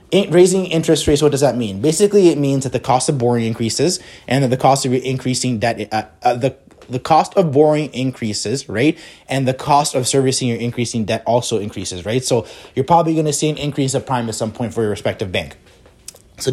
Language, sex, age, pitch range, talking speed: English, male, 20-39, 120-150 Hz, 215 wpm